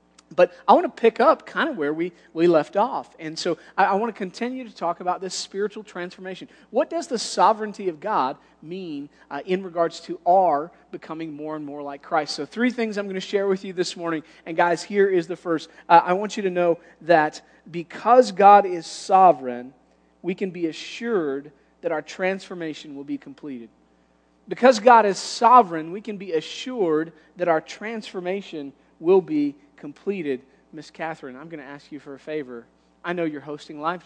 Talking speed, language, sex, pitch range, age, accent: 195 wpm, English, male, 150-200 Hz, 40-59, American